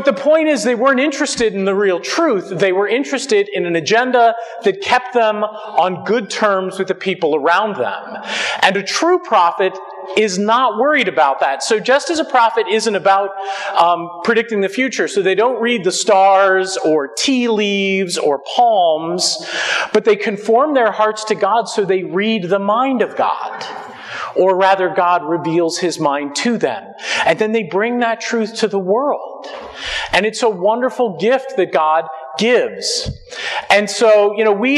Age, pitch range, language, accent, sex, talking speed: 40-59, 190-240 Hz, English, American, male, 180 wpm